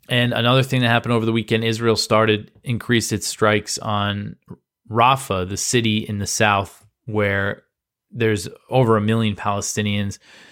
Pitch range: 105-120 Hz